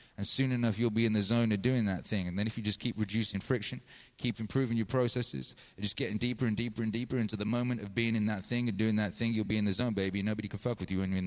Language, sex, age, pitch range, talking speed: English, male, 30-49, 110-150 Hz, 305 wpm